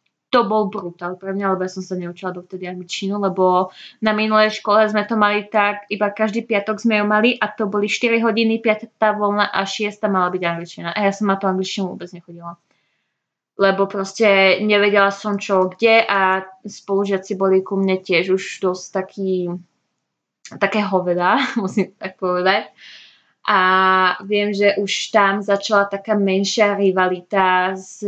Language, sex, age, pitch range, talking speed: Slovak, female, 20-39, 190-215 Hz, 160 wpm